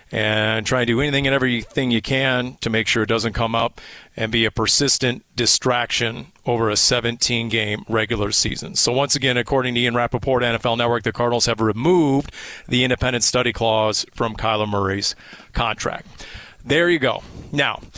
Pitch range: 115-135 Hz